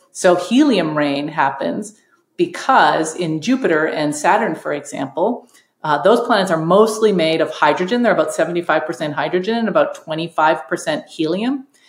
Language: English